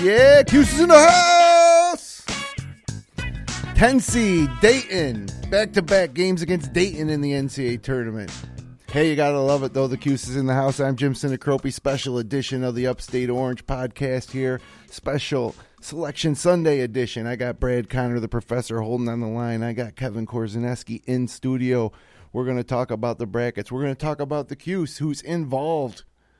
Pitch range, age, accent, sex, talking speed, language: 115-145 Hz, 30-49, American, male, 165 wpm, English